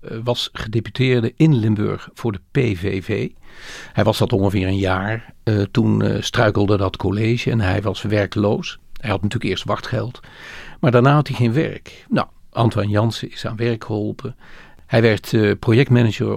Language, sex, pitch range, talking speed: Dutch, male, 105-125 Hz, 165 wpm